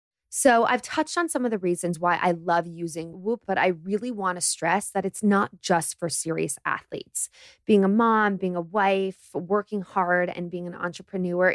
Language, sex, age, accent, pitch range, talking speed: English, female, 20-39, American, 175-210 Hz, 200 wpm